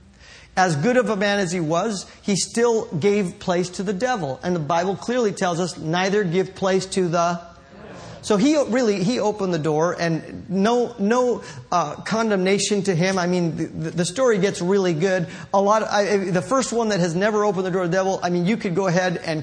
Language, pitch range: English, 165-210 Hz